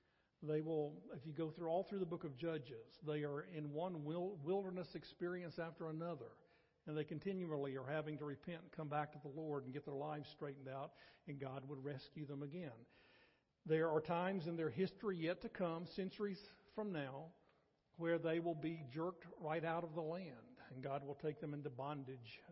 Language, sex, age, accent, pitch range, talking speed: English, male, 50-69, American, 145-170 Hz, 195 wpm